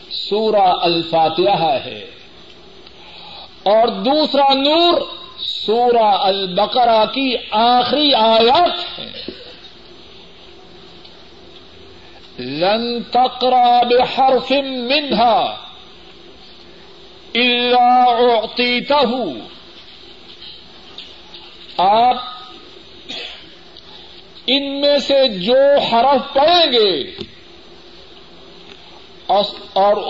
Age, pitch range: 50-69, 195-275 Hz